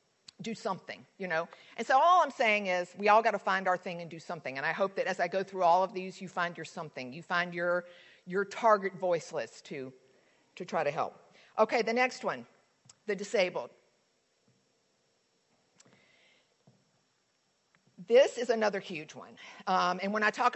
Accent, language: American, English